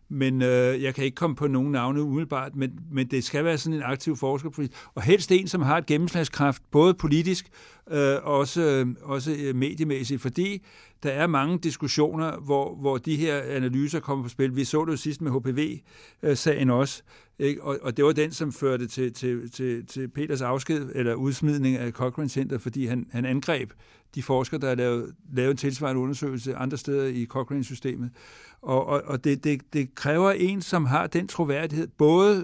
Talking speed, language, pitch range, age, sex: 195 wpm, English, 130-155 Hz, 60-79, male